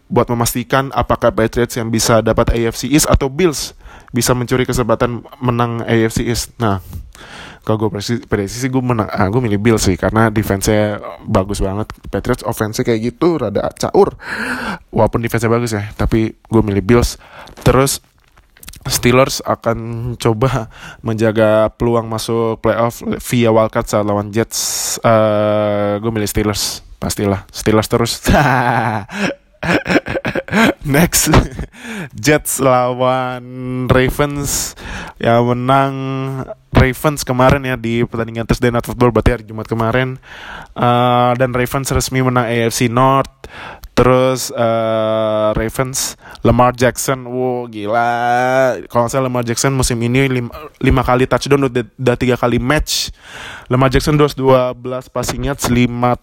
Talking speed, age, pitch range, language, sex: 130 wpm, 20-39, 115-130 Hz, Indonesian, male